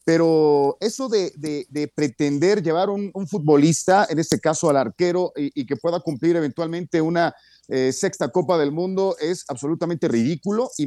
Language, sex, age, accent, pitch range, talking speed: Spanish, male, 40-59, Mexican, 145-205 Hz, 170 wpm